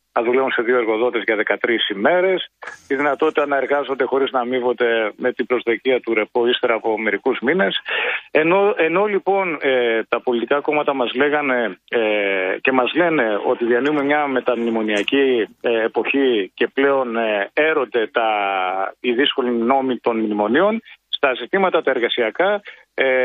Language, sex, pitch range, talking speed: Greek, male, 120-155 Hz, 145 wpm